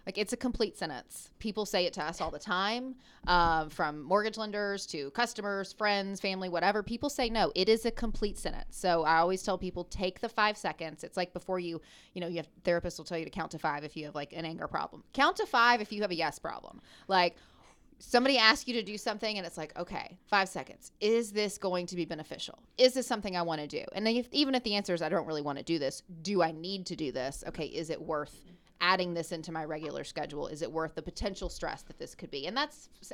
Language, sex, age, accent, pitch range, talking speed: English, female, 30-49, American, 165-210 Hz, 250 wpm